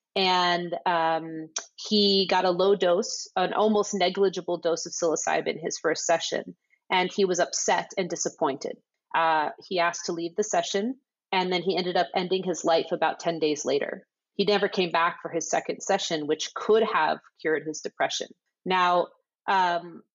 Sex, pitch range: female, 170-210 Hz